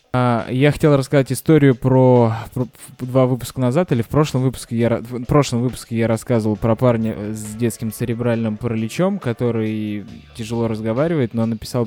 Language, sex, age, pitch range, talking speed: Russian, male, 20-39, 110-125 Hz, 150 wpm